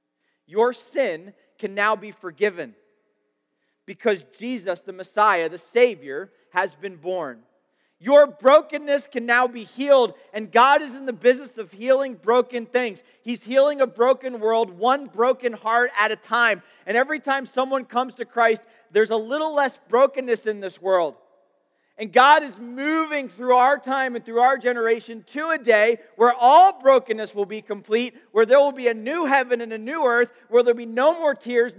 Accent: American